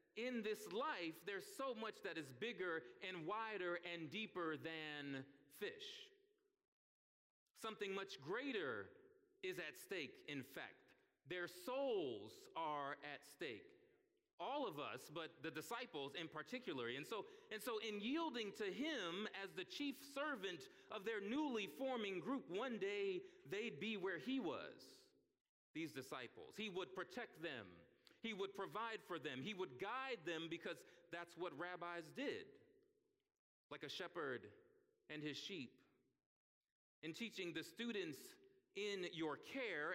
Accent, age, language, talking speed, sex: American, 40-59, English, 140 wpm, male